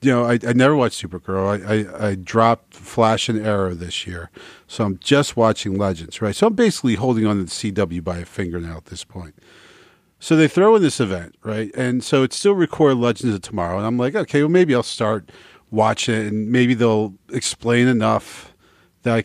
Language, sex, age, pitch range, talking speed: English, male, 40-59, 95-120 Hz, 215 wpm